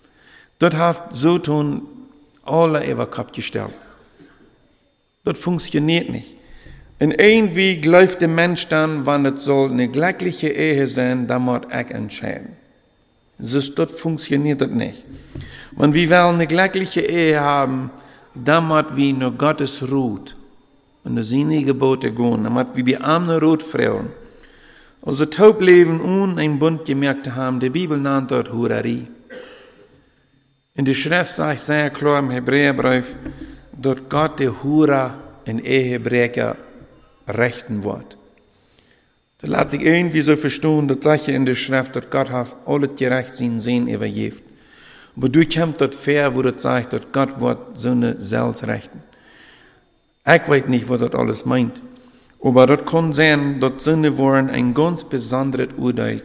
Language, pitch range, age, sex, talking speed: English, 130-160 Hz, 50-69, male, 145 wpm